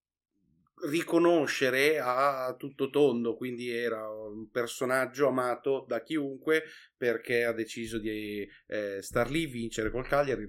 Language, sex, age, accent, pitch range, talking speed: Italian, male, 30-49, native, 110-135 Hz, 120 wpm